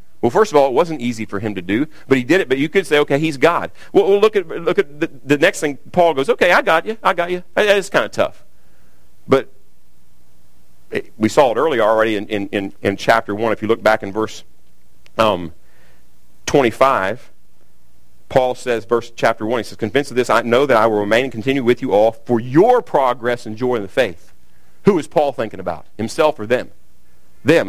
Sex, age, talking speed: male, 50-69, 225 wpm